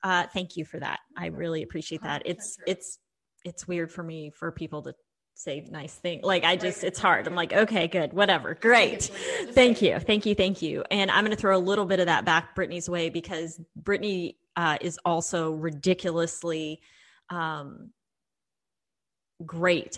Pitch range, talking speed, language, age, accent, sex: 165-185 Hz, 175 wpm, English, 20-39, American, female